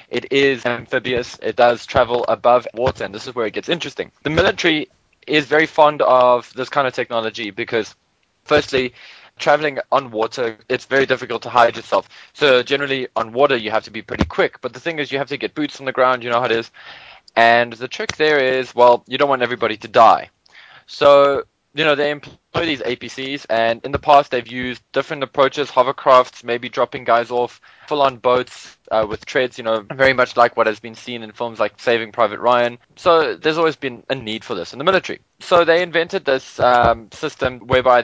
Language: English